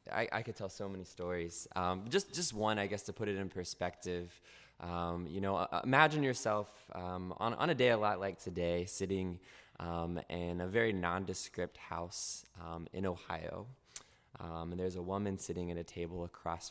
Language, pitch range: English, 85-100 Hz